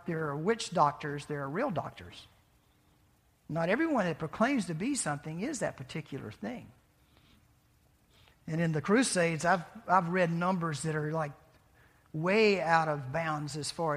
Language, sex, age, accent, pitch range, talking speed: English, male, 50-69, American, 160-195 Hz, 155 wpm